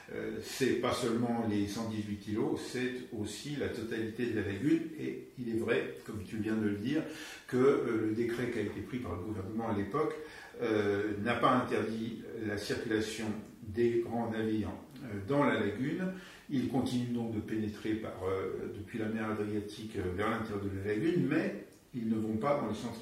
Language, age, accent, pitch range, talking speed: French, 50-69, French, 105-125 Hz, 190 wpm